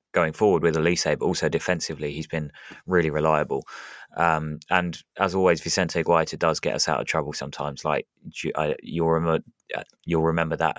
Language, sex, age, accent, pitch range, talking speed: English, male, 20-39, British, 80-90 Hz, 155 wpm